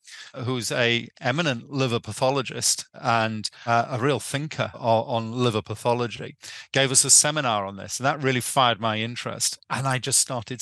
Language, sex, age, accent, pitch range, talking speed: English, male, 40-59, British, 110-135 Hz, 165 wpm